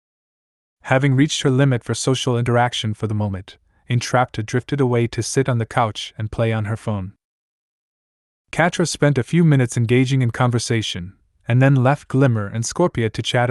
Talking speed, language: 175 wpm, English